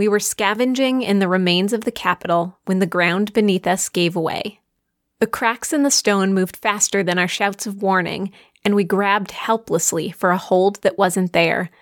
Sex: female